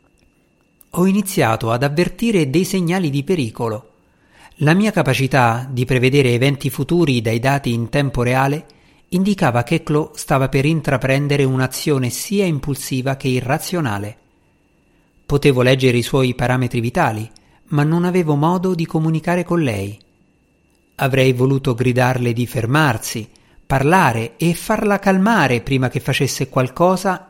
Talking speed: 125 wpm